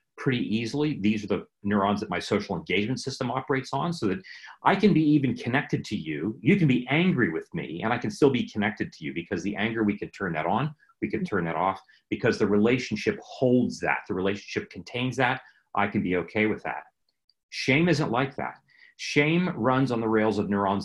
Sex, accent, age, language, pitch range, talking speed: male, American, 40-59, English, 105-155 Hz, 215 wpm